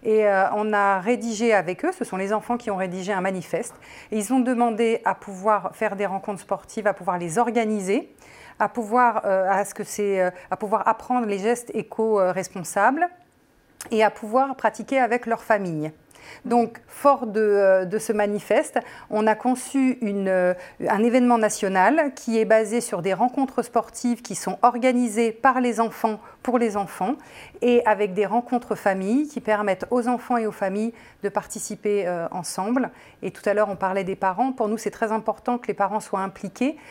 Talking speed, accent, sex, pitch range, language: 180 wpm, French, female, 195-235 Hz, French